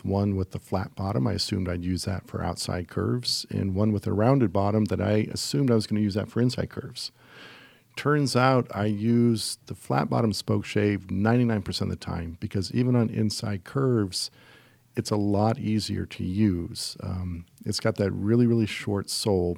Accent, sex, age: American, male, 50-69